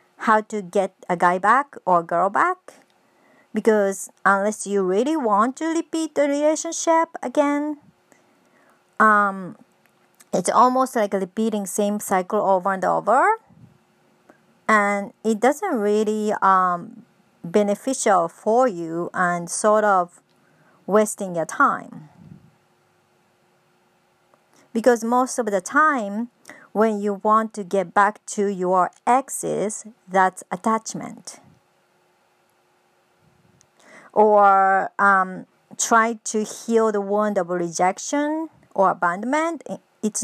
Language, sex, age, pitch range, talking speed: English, male, 50-69, 195-245 Hz, 110 wpm